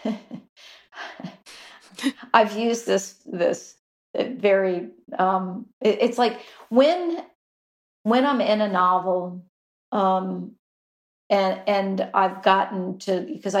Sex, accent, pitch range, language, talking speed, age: female, American, 185-210 Hz, English, 95 wpm, 50-69